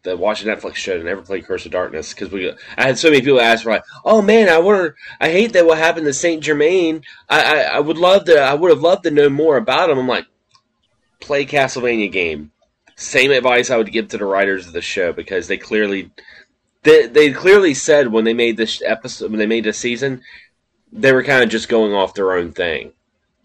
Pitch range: 110-170 Hz